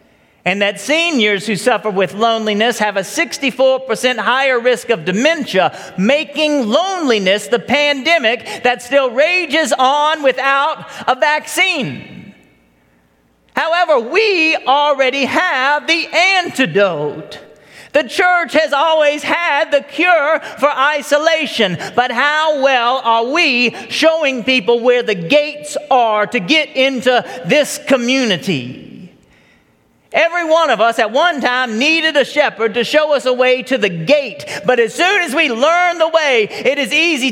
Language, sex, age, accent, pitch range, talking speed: English, male, 40-59, American, 225-300 Hz, 135 wpm